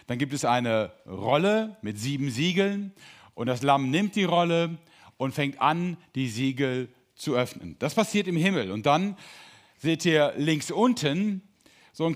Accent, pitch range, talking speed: German, 135-190 Hz, 165 wpm